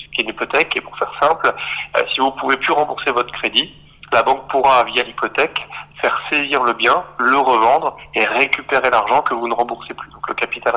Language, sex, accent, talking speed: French, male, French, 215 wpm